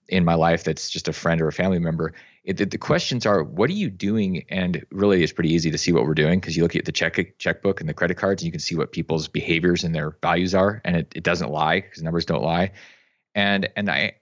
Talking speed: 265 wpm